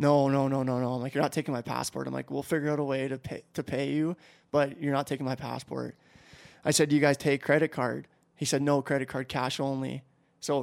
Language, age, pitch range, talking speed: English, 20-39, 135-150 Hz, 260 wpm